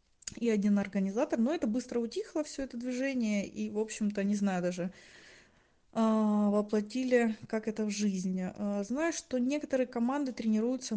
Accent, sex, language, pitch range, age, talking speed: native, female, Russian, 210-265 Hz, 20-39, 140 wpm